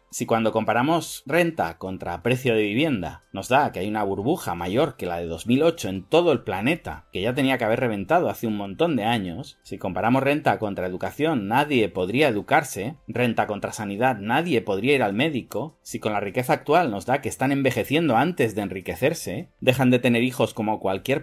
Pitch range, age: 105-130 Hz, 30-49